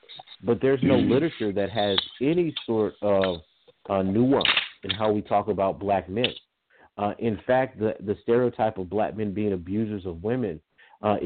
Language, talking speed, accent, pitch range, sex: English, 170 wpm, American, 95-110 Hz, male